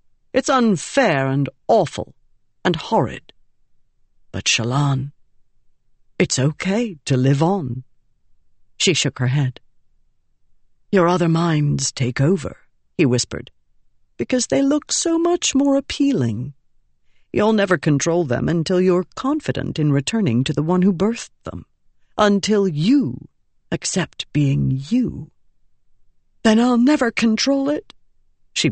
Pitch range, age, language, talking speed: 130-195 Hz, 50-69, English, 120 wpm